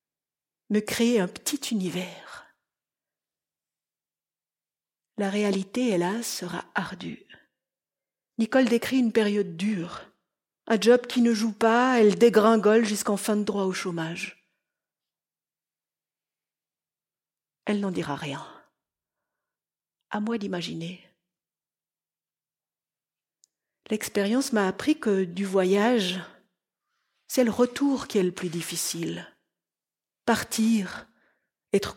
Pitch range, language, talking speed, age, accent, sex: 195-260 Hz, French, 100 wpm, 50-69, French, female